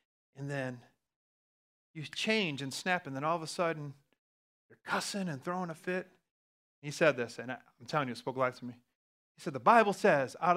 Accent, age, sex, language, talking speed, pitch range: American, 30-49, male, English, 210 wpm, 140-200 Hz